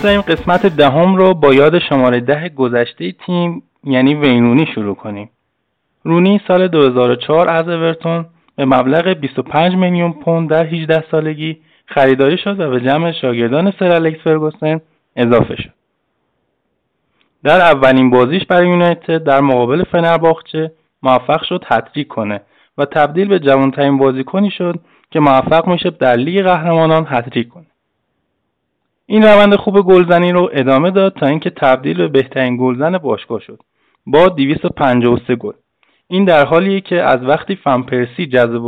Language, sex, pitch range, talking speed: Persian, male, 130-180 Hz, 140 wpm